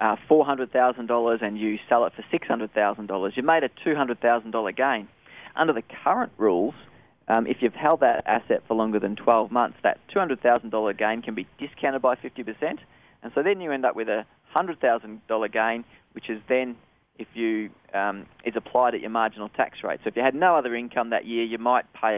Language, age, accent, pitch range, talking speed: English, 20-39, Australian, 110-125 Hz, 195 wpm